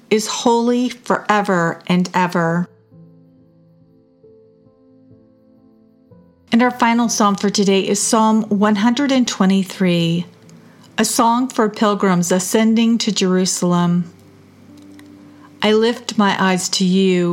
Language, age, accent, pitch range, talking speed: English, 40-59, American, 175-220 Hz, 95 wpm